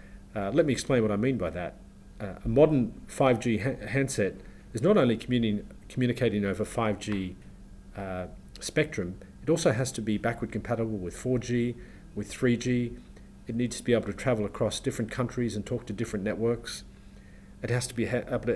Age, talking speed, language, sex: 40-59, 170 wpm, English, male